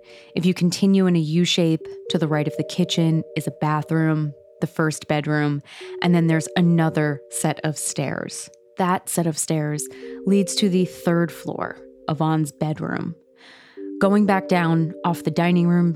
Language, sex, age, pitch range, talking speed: English, female, 20-39, 145-175 Hz, 160 wpm